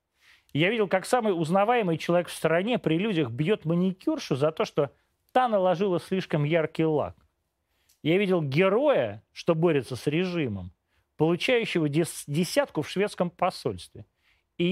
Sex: male